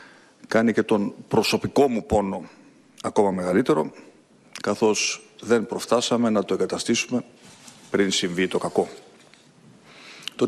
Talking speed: 110 wpm